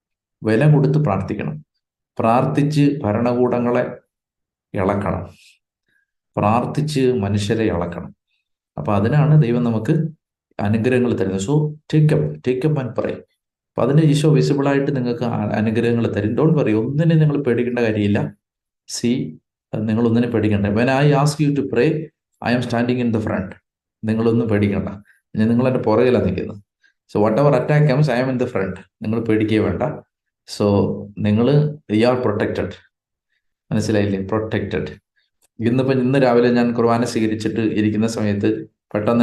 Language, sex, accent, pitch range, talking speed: Malayalam, male, native, 110-135 Hz, 105 wpm